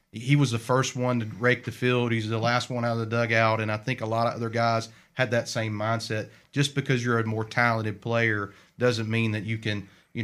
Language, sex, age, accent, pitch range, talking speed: English, male, 40-59, American, 110-130 Hz, 245 wpm